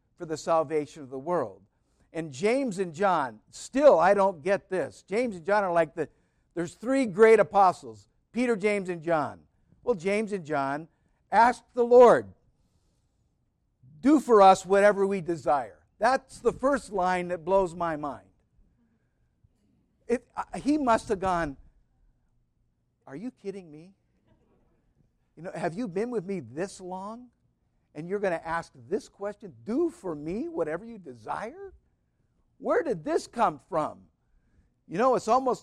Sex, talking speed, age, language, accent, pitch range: male, 155 wpm, 60-79, English, American, 150-215 Hz